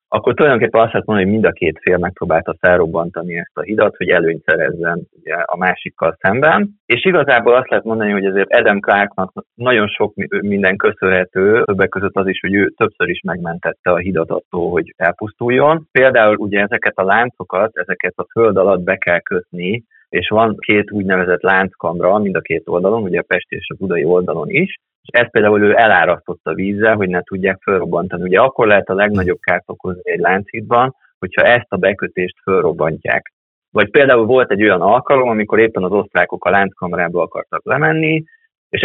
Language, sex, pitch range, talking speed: Hungarian, male, 90-110 Hz, 180 wpm